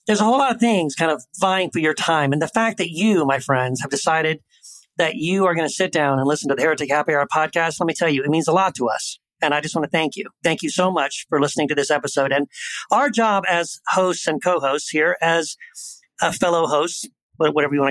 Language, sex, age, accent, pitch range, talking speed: English, male, 40-59, American, 145-180 Hz, 260 wpm